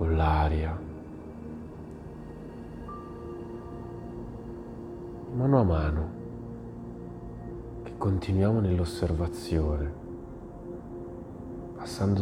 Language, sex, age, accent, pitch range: Italian, male, 30-49, native, 80-100 Hz